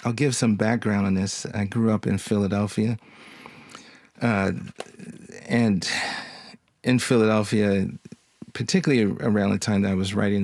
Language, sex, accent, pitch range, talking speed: English, male, American, 100-115 Hz, 130 wpm